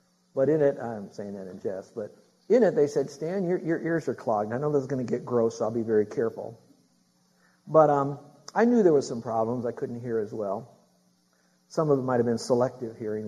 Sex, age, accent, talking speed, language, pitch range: male, 50-69, American, 240 wpm, English, 115-155 Hz